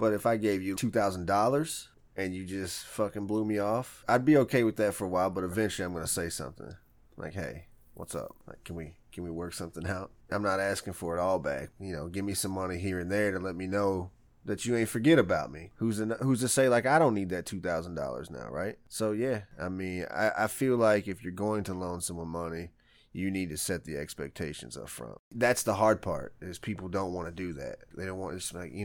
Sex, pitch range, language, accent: male, 95-115 Hz, English, American